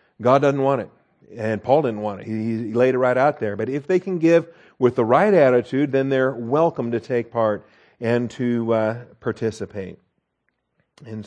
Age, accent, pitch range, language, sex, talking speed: 50-69, American, 115-145 Hz, English, male, 185 wpm